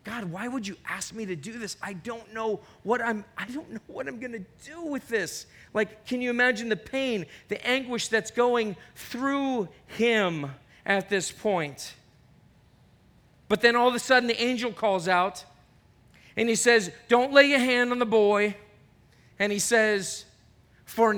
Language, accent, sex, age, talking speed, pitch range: English, American, male, 40-59, 165 wpm, 185-245 Hz